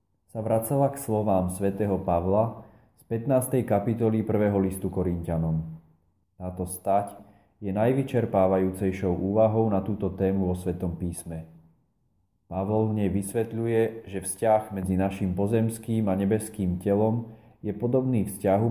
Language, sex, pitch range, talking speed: Slovak, male, 95-115 Hz, 120 wpm